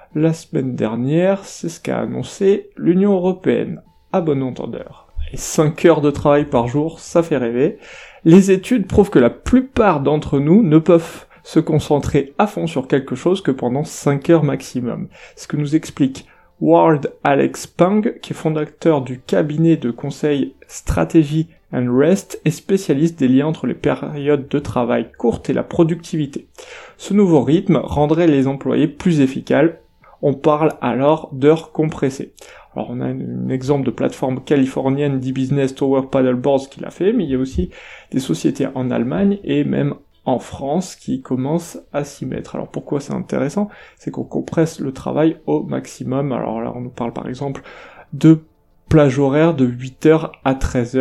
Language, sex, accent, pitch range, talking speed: French, male, French, 130-165 Hz, 170 wpm